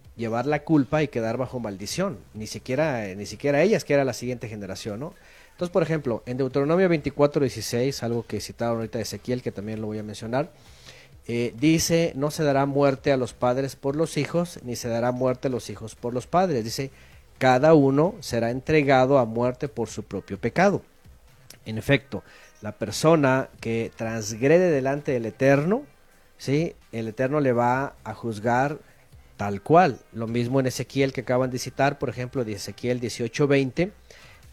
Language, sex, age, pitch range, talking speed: Spanish, male, 40-59, 115-145 Hz, 175 wpm